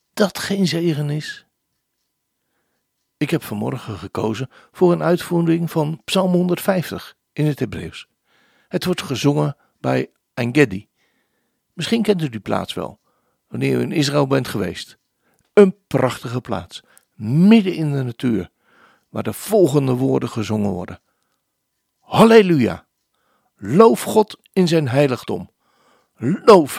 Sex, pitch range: male, 110-180 Hz